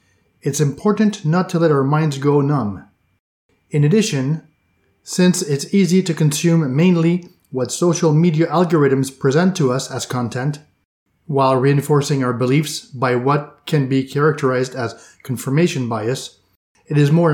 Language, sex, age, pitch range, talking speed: English, male, 30-49, 130-170 Hz, 140 wpm